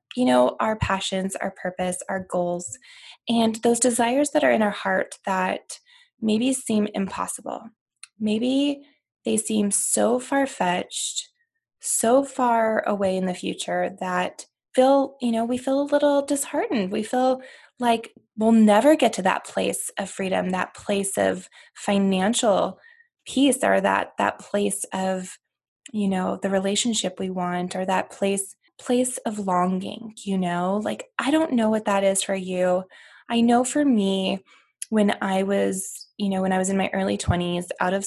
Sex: female